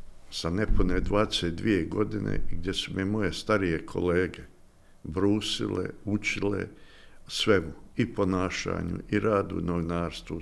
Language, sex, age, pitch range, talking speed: Croatian, male, 60-79, 80-95 Hz, 130 wpm